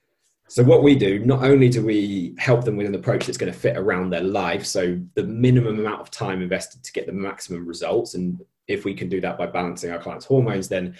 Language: English